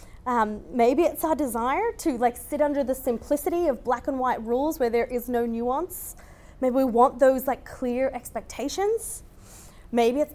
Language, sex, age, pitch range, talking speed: English, female, 20-39, 220-285 Hz, 175 wpm